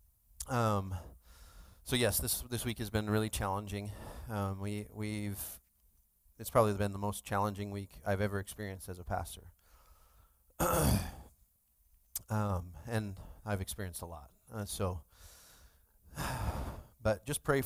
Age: 30-49